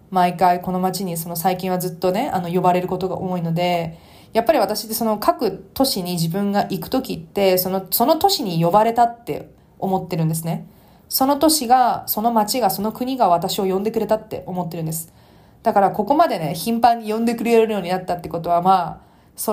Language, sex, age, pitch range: Japanese, female, 20-39, 175-215 Hz